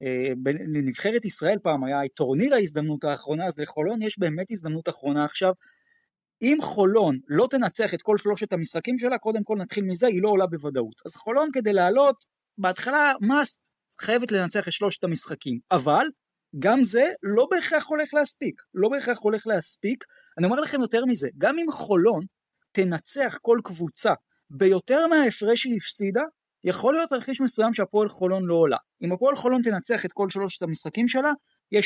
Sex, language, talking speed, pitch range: male, Hebrew, 160 wpm, 165-250 Hz